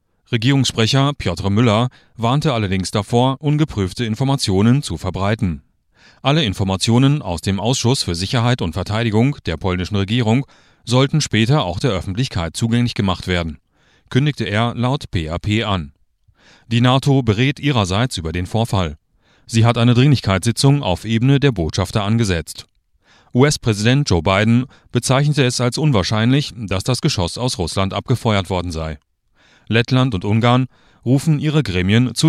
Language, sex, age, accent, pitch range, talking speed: German, male, 40-59, German, 95-130 Hz, 135 wpm